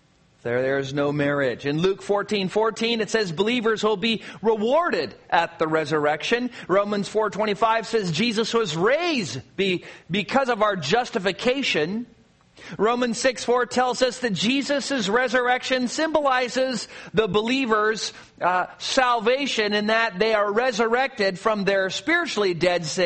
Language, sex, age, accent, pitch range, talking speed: English, male, 40-59, American, 190-230 Hz, 140 wpm